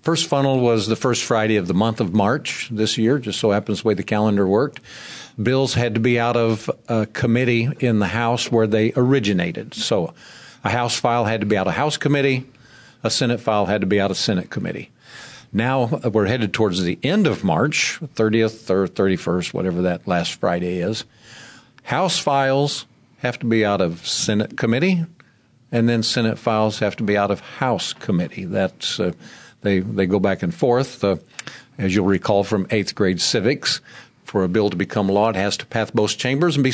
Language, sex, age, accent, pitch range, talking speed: English, male, 50-69, American, 105-125 Hz, 200 wpm